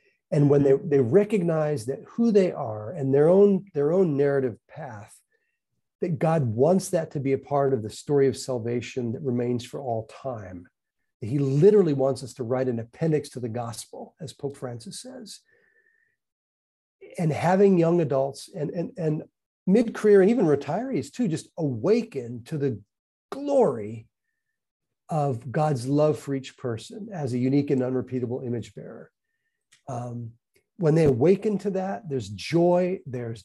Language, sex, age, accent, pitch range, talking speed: English, male, 40-59, American, 125-175 Hz, 160 wpm